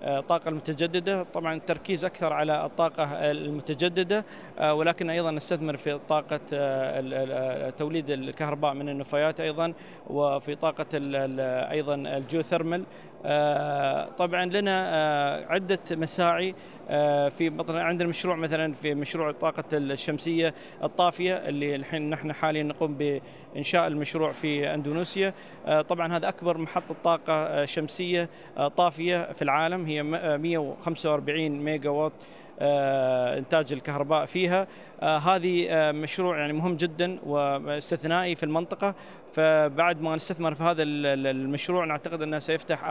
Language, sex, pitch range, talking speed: Arabic, male, 145-170 Hz, 105 wpm